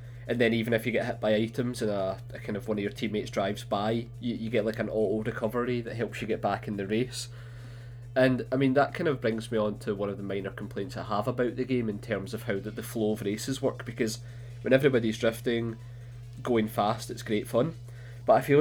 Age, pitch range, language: 20-39, 110-125 Hz, English